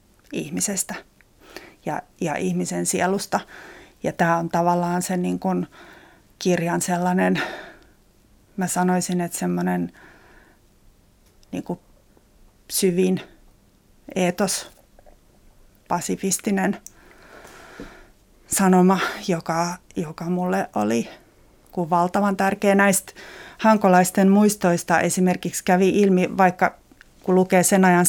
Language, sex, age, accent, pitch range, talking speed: Finnish, female, 30-49, native, 175-200 Hz, 85 wpm